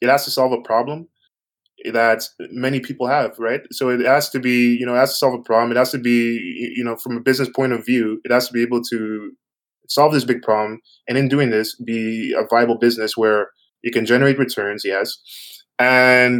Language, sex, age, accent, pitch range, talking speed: English, male, 20-39, American, 110-130 Hz, 225 wpm